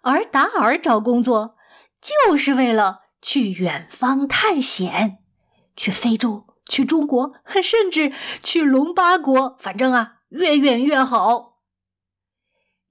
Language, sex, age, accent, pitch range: Chinese, female, 20-39, native, 220-285 Hz